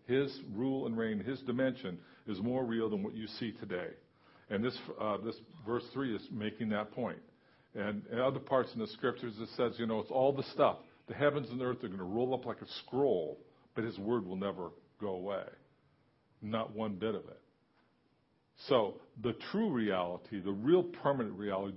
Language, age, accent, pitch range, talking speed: English, 50-69, American, 105-130 Hz, 200 wpm